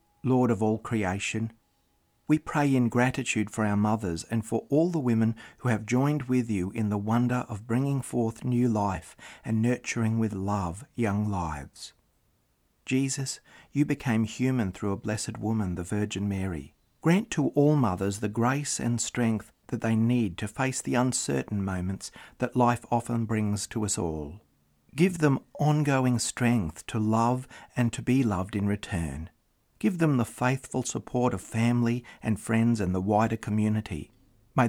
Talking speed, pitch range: 165 wpm, 100-125 Hz